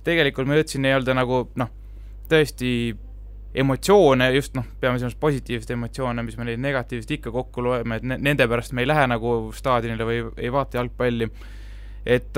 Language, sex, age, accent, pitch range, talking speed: English, male, 20-39, Finnish, 125-150 Hz, 165 wpm